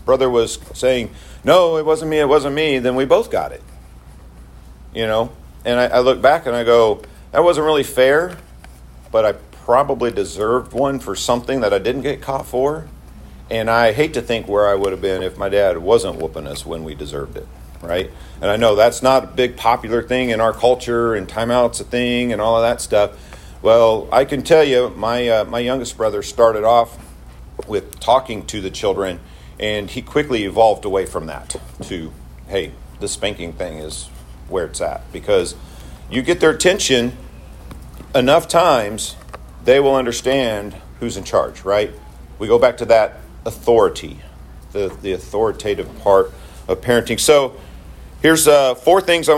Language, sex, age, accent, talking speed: English, male, 50-69, American, 180 wpm